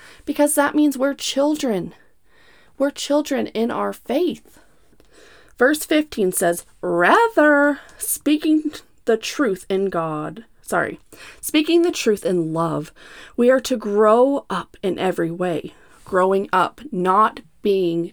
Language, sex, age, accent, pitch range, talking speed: English, female, 30-49, American, 175-270 Hz, 125 wpm